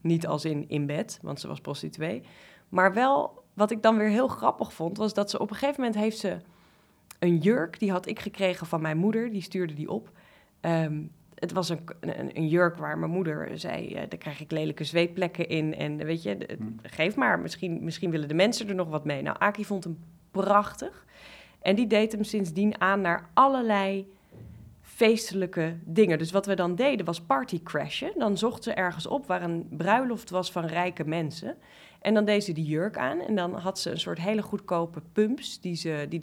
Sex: female